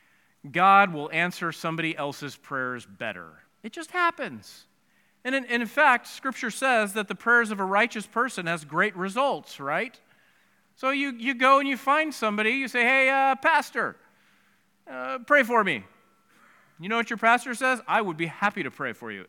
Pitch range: 160-235 Hz